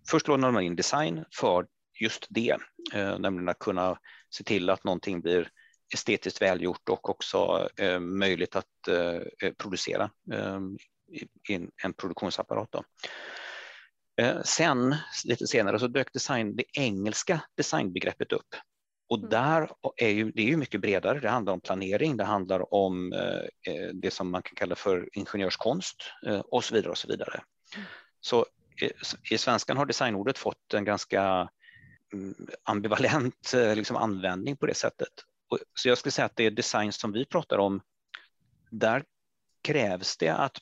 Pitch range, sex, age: 95-130 Hz, male, 30-49